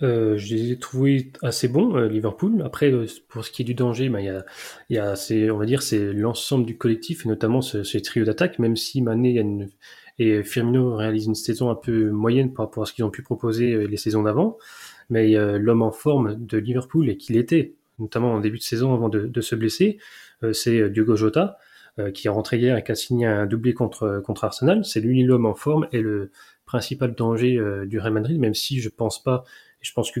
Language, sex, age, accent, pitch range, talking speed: French, male, 20-39, French, 110-125 Hz, 225 wpm